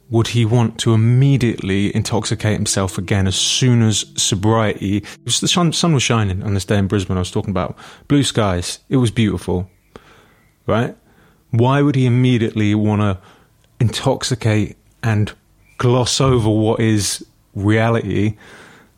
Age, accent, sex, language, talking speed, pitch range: 30-49, British, male, English, 145 wpm, 100-120 Hz